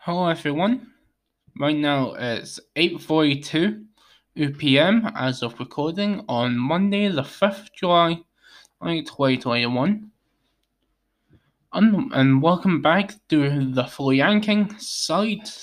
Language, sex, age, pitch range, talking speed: English, male, 20-39, 120-165 Hz, 95 wpm